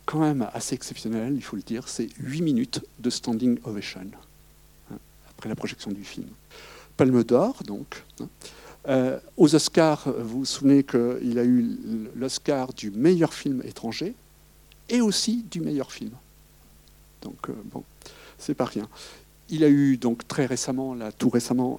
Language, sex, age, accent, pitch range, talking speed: French, male, 60-79, French, 115-140 Hz, 160 wpm